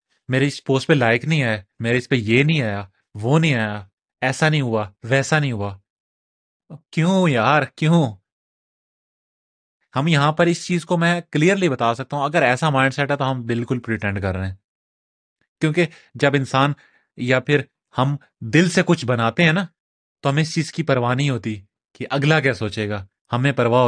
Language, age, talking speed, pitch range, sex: Urdu, 30-49, 190 wpm, 115-155 Hz, male